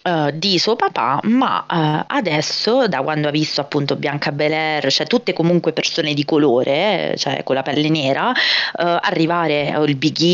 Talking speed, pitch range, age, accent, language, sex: 170 wpm, 145-180 Hz, 30-49, native, Italian, female